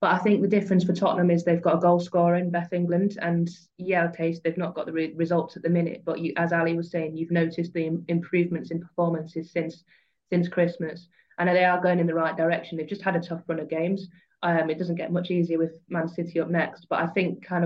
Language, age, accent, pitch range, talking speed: English, 20-39, British, 165-175 Hz, 250 wpm